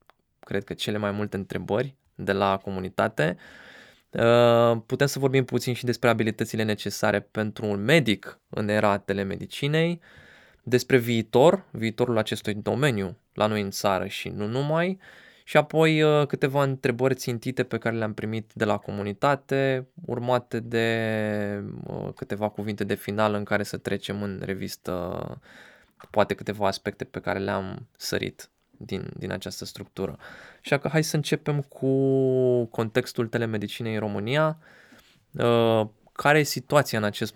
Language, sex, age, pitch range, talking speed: Romanian, male, 20-39, 105-130 Hz, 135 wpm